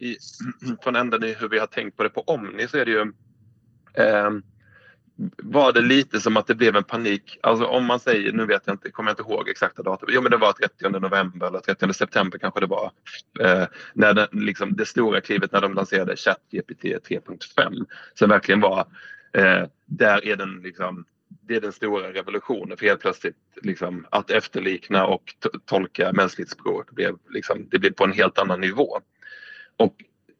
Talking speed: 190 wpm